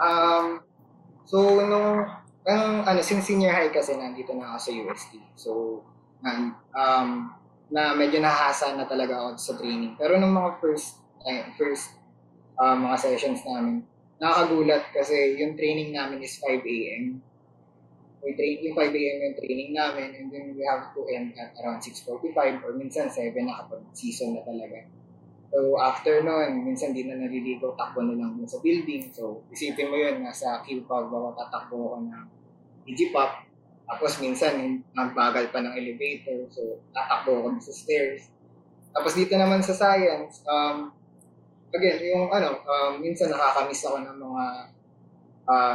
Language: English